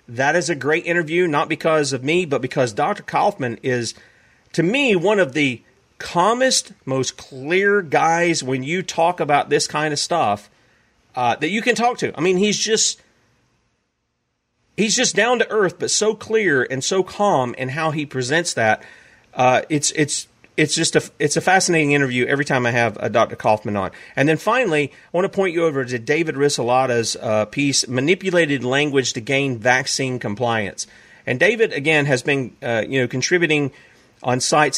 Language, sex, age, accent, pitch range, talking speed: English, male, 40-59, American, 130-180 Hz, 180 wpm